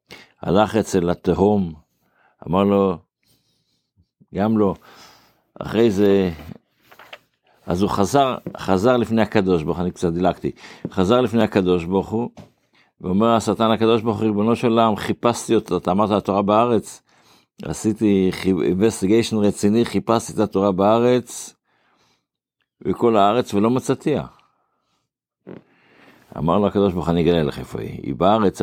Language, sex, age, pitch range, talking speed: Hebrew, male, 60-79, 85-105 Hz, 125 wpm